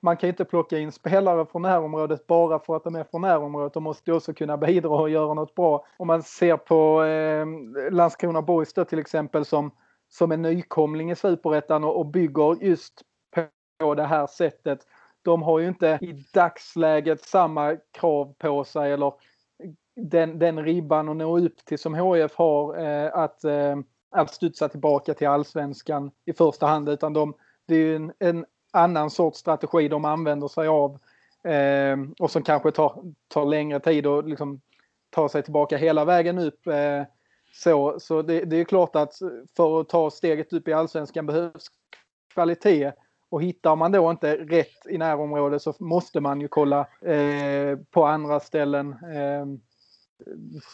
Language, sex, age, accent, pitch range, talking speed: Swedish, male, 30-49, native, 150-165 Hz, 170 wpm